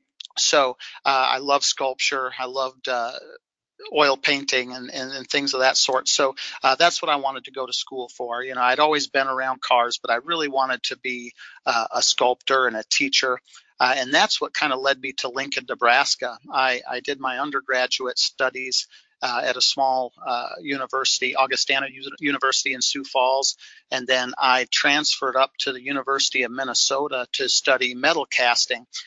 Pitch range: 125-140 Hz